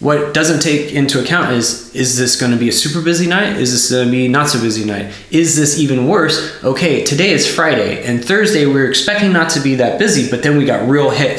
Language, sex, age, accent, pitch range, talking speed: English, male, 20-39, American, 135-165 Hz, 240 wpm